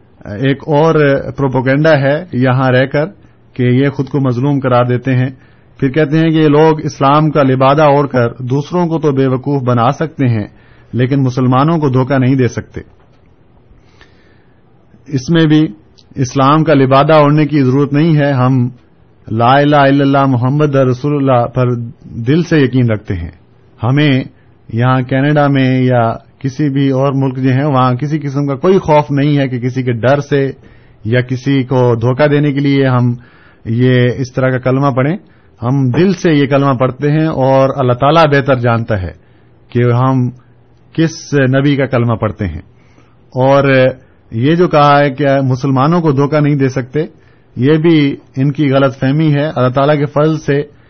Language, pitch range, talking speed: Urdu, 125-145 Hz, 175 wpm